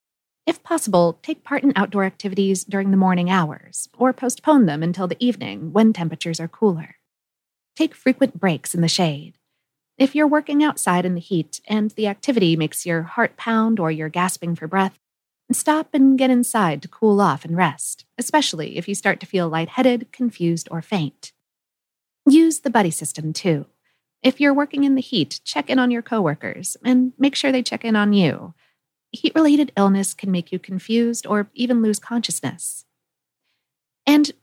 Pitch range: 175-260 Hz